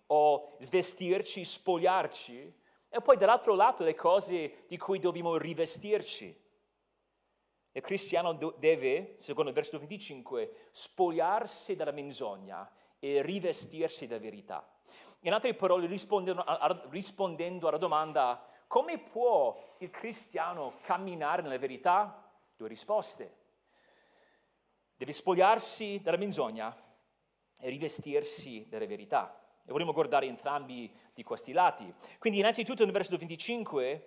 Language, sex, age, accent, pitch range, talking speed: Italian, male, 40-59, native, 165-225 Hz, 110 wpm